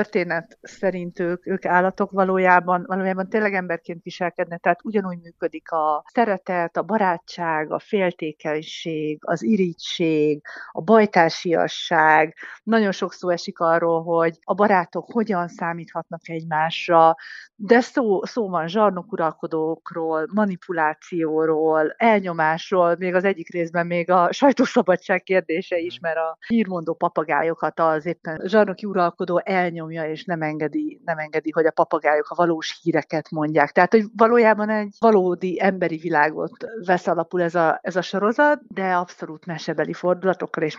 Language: Hungarian